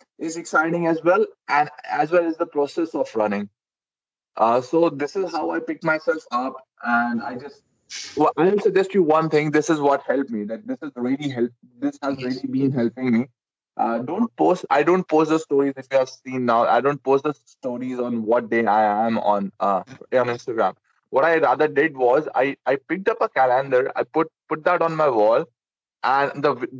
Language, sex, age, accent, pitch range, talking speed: Hindi, male, 20-39, native, 125-195 Hz, 215 wpm